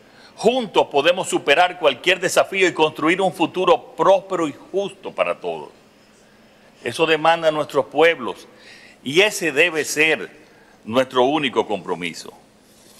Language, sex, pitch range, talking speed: Spanish, male, 115-150 Hz, 120 wpm